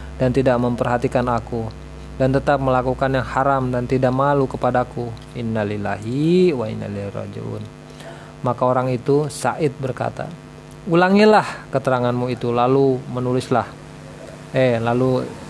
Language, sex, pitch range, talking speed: Indonesian, male, 110-130 Hz, 110 wpm